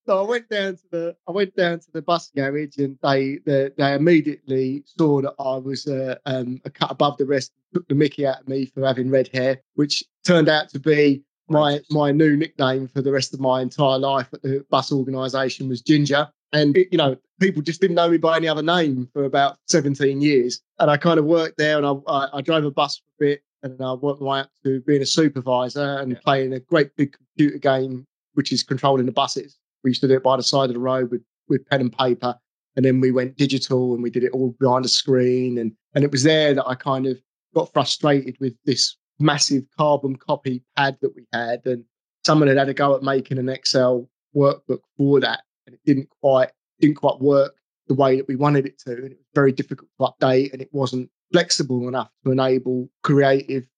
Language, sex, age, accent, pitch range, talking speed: English, male, 20-39, British, 130-150 Hz, 230 wpm